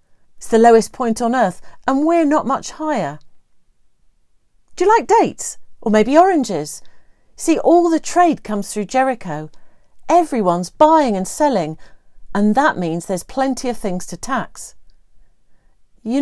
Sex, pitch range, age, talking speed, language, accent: female, 190-270 Hz, 40-59, 145 wpm, English, British